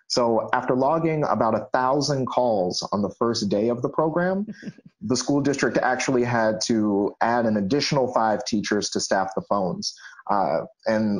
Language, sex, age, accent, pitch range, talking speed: English, male, 30-49, American, 110-145 Hz, 165 wpm